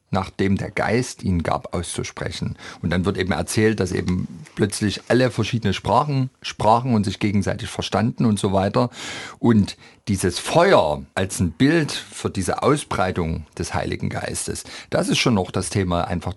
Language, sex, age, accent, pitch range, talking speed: German, male, 50-69, German, 90-120 Hz, 160 wpm